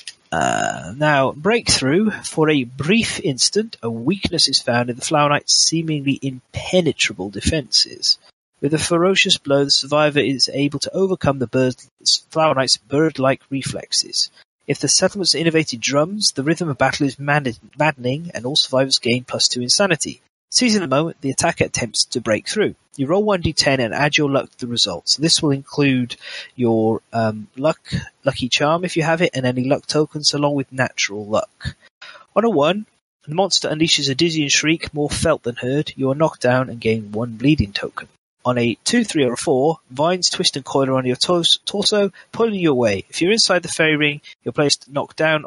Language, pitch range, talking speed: English, 130-165 Hz, 185 wpm